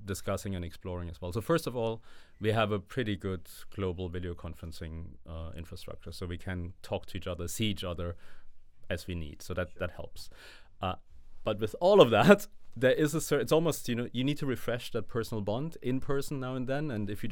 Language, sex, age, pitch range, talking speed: English, male, 30-49, 90-110 Hz, 225 wpm